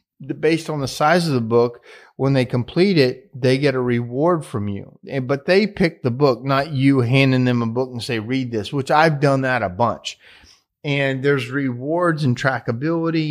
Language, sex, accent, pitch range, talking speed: English, male, American, 115-140 Hz, 195 wpm